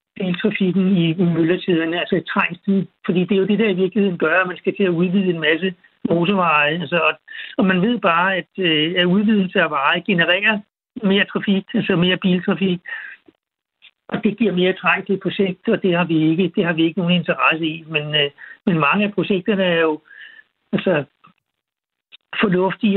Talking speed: 190 wpm